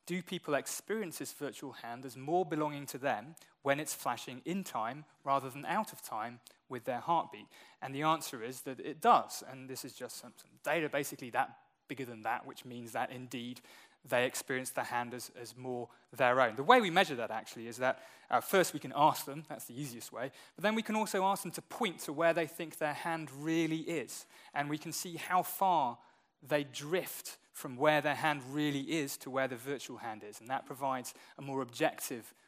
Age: 20-39